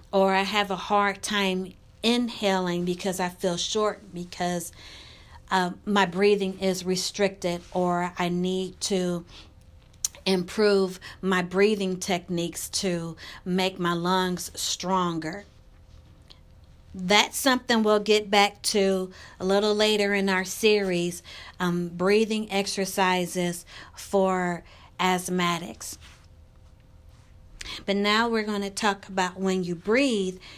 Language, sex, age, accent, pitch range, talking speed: English, female, 40-59, American, 165-205 Hz, 110 wpm